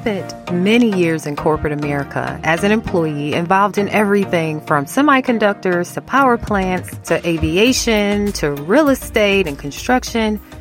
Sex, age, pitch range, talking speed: female, 30-49, 150-215 Hz, 135 wpm